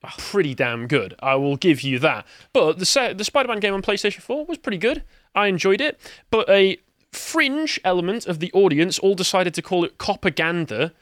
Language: English